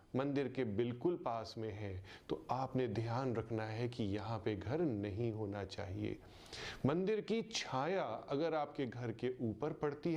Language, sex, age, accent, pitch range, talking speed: Hindi, male, 30-49, native, 115-165 Hz, 160 wpm